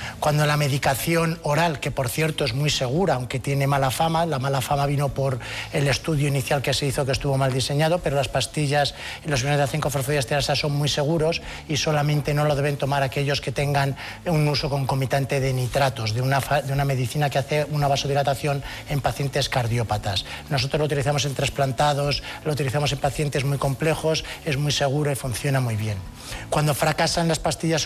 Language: Spanish